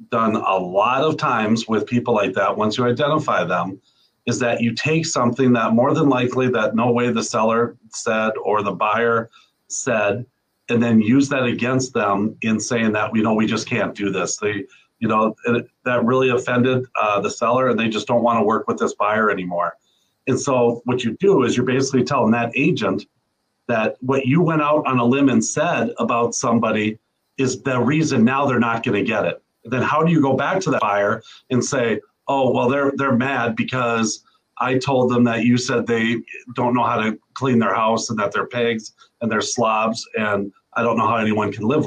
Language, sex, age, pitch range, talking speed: English, male, 40-59, 110-130 Hz, 210 wpm